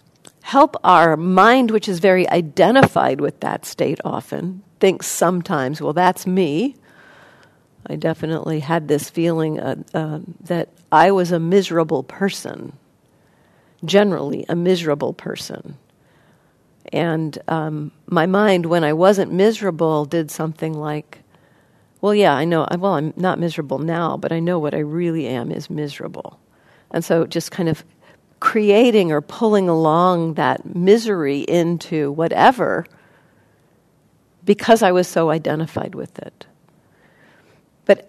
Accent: American